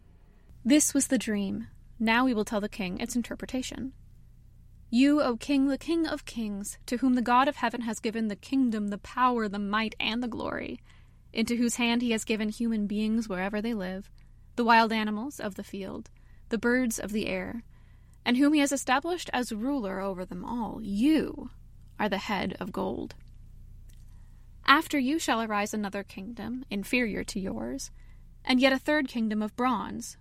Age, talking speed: 20-39, 180 wpm